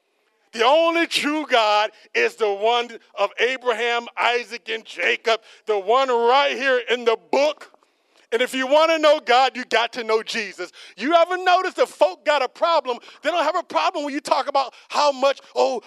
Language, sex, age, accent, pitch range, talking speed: English, male, 40-59, American, 225-320 Hz, 195 wpm